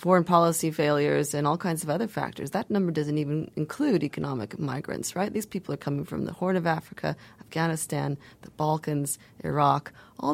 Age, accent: 30-49, American